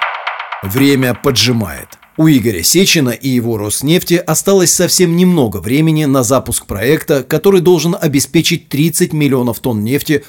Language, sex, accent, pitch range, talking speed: Russian, male, native, 120-155 Hz, 130 wpm